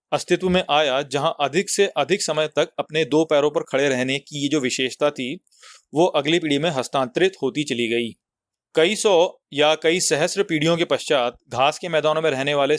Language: Hindi